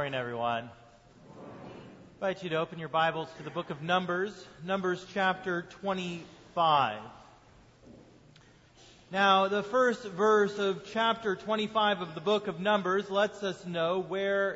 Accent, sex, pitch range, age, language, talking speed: American, male, 180-220 Hz, 30-49, English, 140 wpm